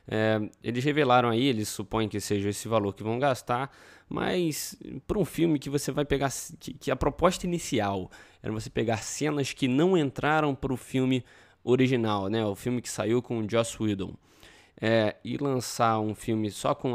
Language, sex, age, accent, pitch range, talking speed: Portuguese, male, 20-39, Brazilian, 105-140 Hz, 190 wpm